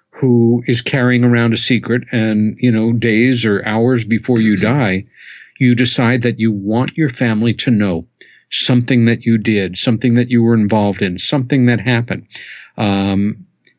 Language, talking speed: English, 165 wpm